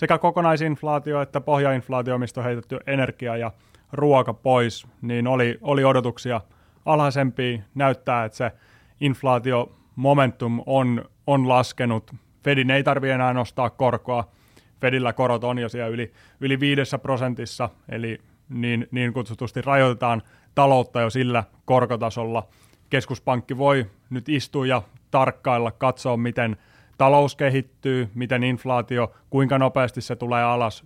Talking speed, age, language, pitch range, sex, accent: 125 wpm, 30-49, Finnish, 115-135 Hz, male, native